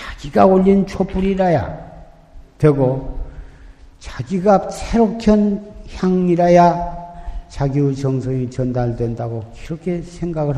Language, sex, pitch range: Korean, male, 125-175 Hz